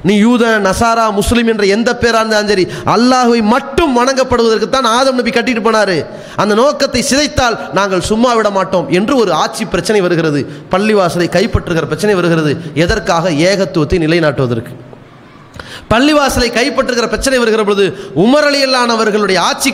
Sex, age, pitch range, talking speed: male, 30-49, 180-270 Hz, 175 wpm